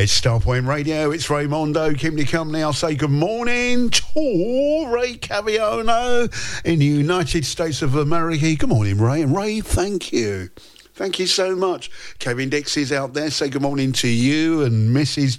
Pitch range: 120-170 Hz